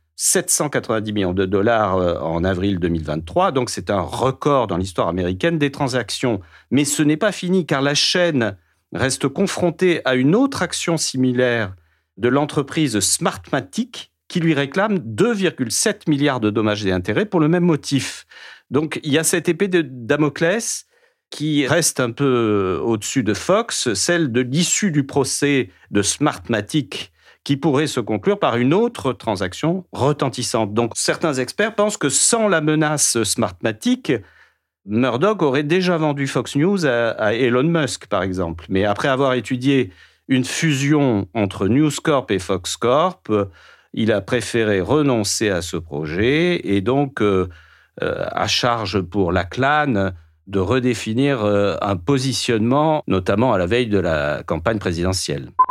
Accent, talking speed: French, 150 wpm